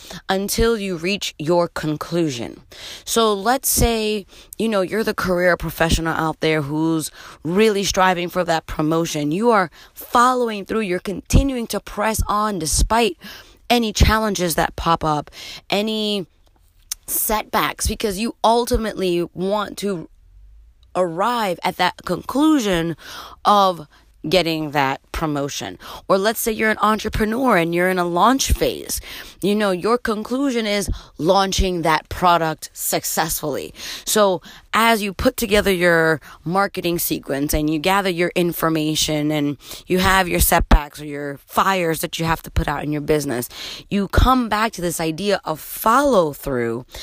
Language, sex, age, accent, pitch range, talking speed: English, female, 30-49, American, 160-215 Hz, 140 wpm